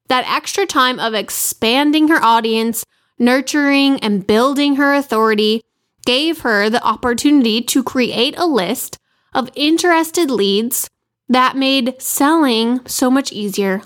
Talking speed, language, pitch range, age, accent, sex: 125 wpm, English, 220-280 Hz, 10-29, American, female